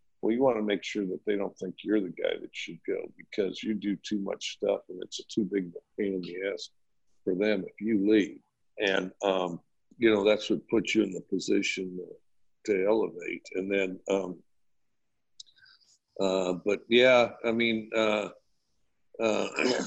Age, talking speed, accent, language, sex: 50-69, 185 wpm, American, English, male